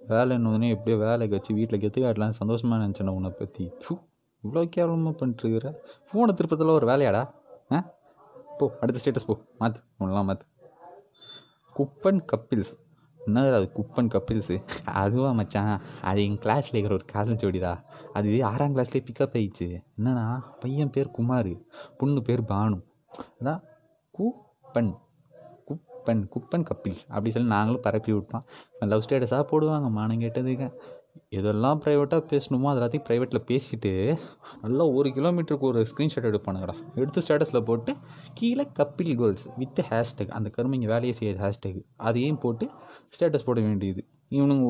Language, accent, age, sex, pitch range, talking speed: Tamil, native, 20-39, male, 105-145 Hz, 130 wpm